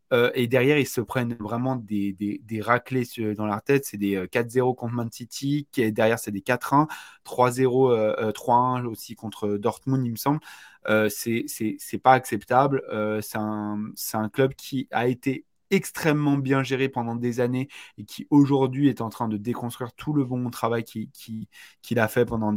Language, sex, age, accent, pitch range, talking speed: French, male, 20-39, French, 110-130 Hz, 195 wpm